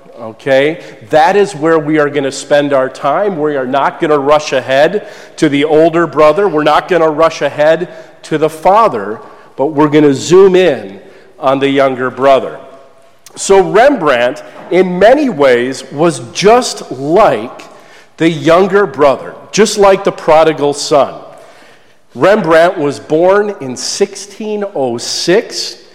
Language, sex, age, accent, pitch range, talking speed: English, male, 40-59, American, 145-185 Hz, 145 wpm